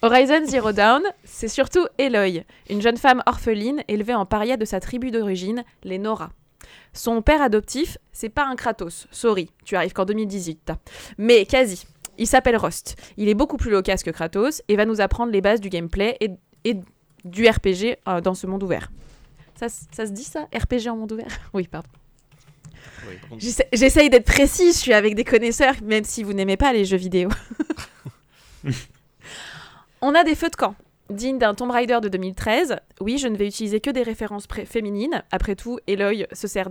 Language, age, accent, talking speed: French, 20-39, French, 185 wpm